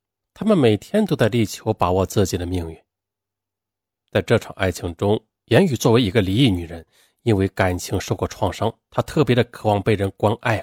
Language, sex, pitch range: Chinese, male, 95-140 Hz